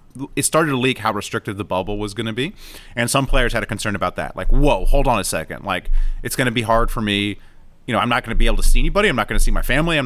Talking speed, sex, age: 315 wpm, male, 30-49